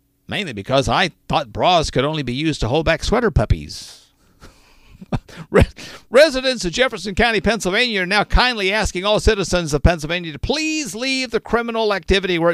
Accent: American